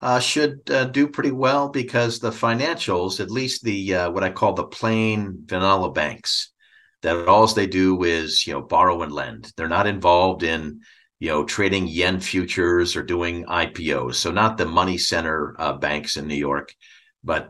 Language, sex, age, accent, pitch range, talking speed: English, male, 50-69, American, 80-100 Hz, 180 wpm